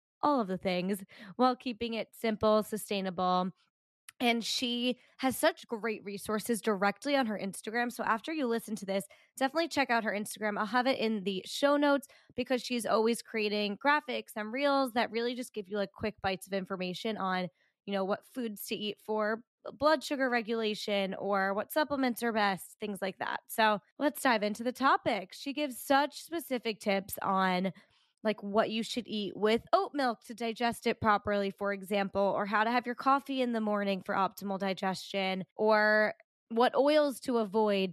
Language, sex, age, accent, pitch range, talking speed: English, female, 20-39, American, 200-255 Hz, 185 wpm